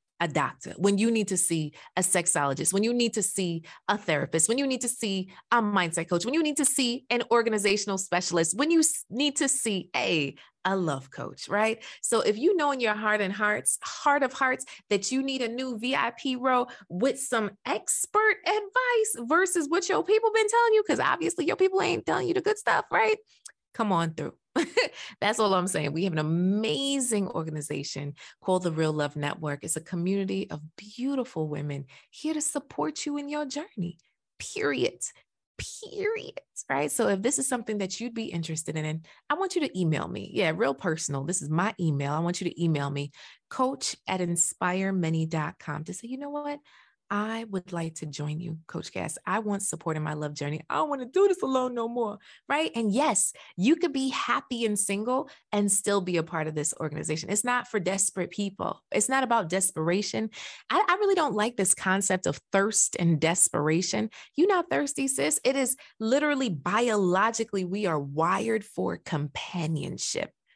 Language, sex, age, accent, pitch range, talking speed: English, female, 20-39, American, 165-265 Hz, 195 wpm